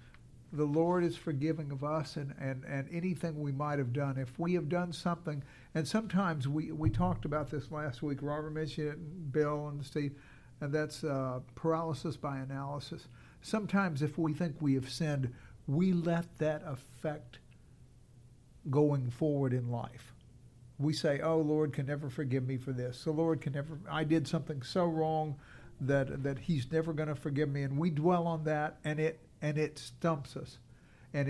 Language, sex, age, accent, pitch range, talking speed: English, male, 60-79, American, 135-160 Hz, 180 wpm